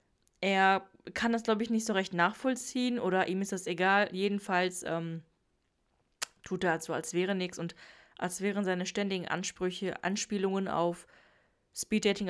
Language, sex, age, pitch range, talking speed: German, female, 20-39, 185-225 Hz, 155 wpm